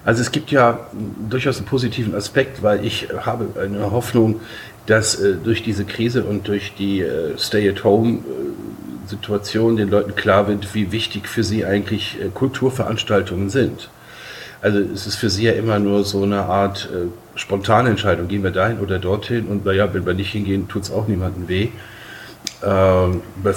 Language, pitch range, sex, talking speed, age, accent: German, 100-115 Hz, male, 160 wpm, 50-69, German